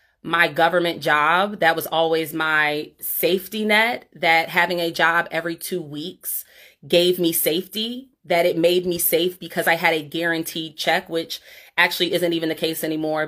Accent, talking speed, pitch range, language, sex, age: American, 165 wpm, 160-190 Hz, English, female, 30-49